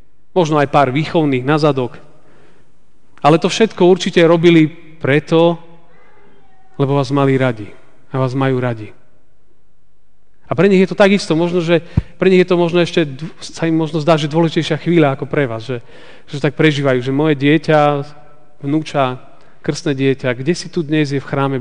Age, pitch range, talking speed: 40-59, 130-170 Hz, 165 wpm